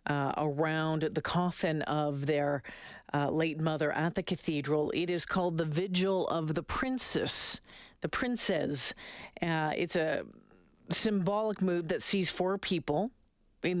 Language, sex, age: English, female, 40-59